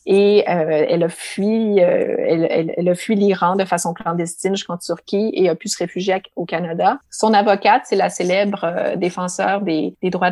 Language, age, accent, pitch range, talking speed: French, 30-49, Canadian, 175-195 Hz, 190 wpm